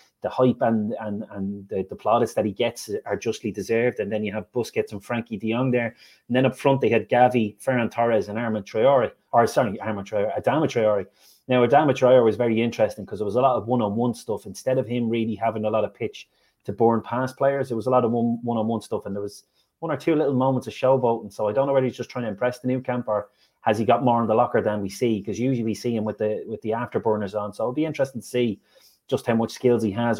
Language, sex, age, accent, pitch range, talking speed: English, male, 30-49, Irish, 110-130 Hz, 275 wpm